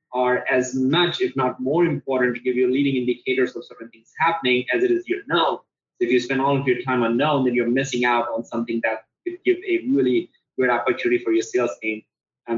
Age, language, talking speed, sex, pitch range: 20-39, English, 230 wpm, male, 125-145 Hz